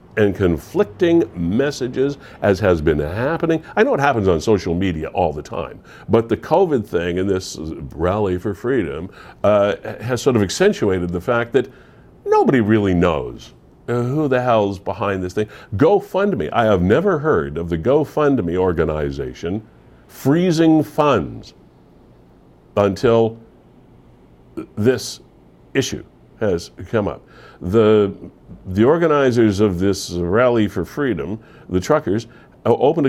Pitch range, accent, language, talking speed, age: 90-135 Hz, American, English, 130 wpm, 60-79